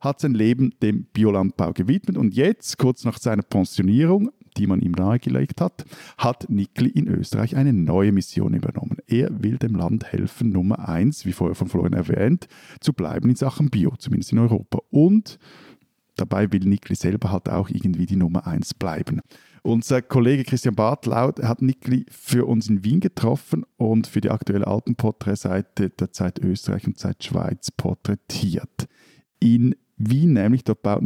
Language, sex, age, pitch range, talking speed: German, male, 50-69, 100-125 Hz, 165 wpm